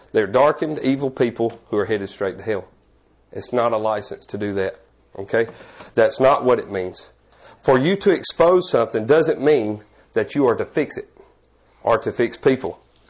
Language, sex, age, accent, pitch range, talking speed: English, male, 40-59, American, 120-160 Hz, 185 wpm